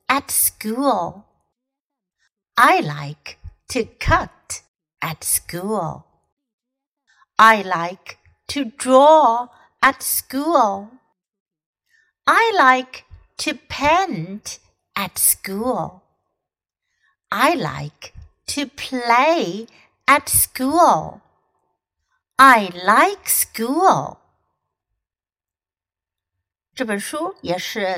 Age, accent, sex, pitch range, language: 60-79, American, female, 175-270 Hz, Chinese